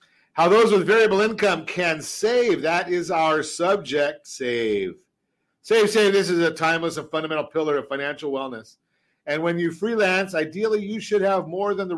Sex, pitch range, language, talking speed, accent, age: male, 145-195 Hz, English, 175 wpm, American, 50-69